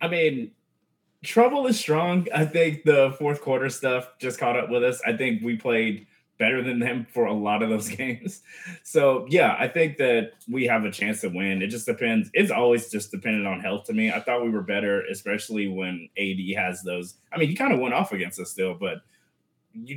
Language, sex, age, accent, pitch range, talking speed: English, male, 20-39, American, 100-145 Hz, 220 wpm